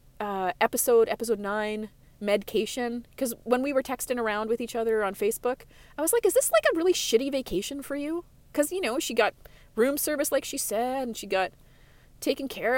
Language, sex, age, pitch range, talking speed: English, female, 30-49, 190-240 Hz, 200 wpm